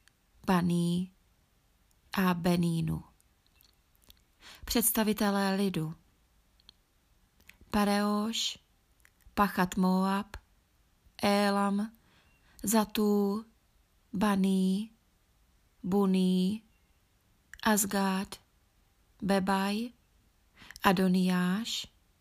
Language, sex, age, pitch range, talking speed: Czech, female, 20-39, 190-210 Hz, 40 wpm